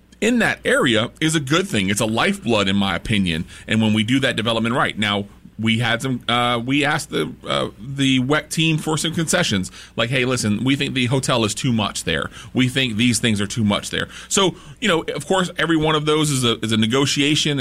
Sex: male